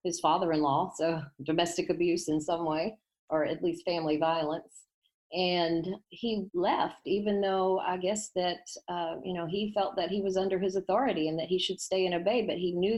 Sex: female